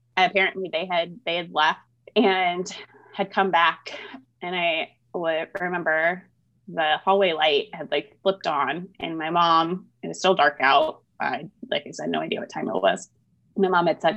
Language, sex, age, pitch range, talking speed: English, female, 20-39, 135-195 Hz, 180 wpm